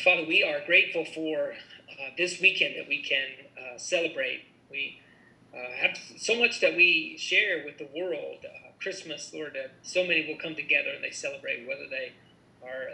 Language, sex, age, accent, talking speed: English, male, 40-59, American, 180 wpm